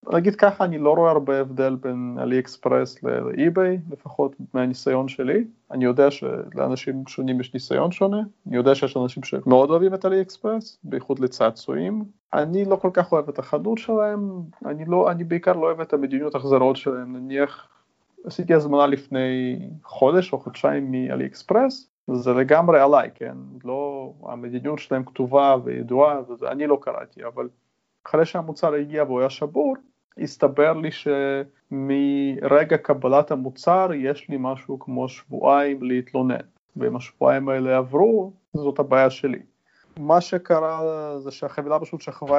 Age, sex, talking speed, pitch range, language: 30-49, male, 135 wpm, 130-170 Hz, Hebrew